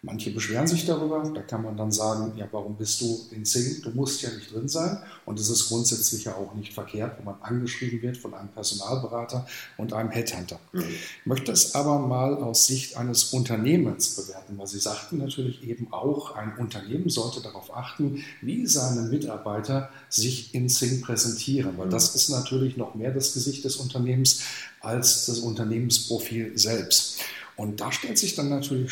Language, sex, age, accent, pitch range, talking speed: German, male, 50-69, German, 110-140 Hz, 180 wpm